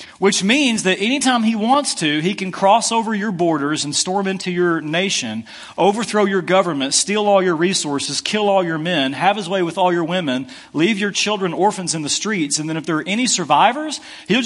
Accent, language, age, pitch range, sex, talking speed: American, English, 40-59, 155-200 Hz, male, 210 wpm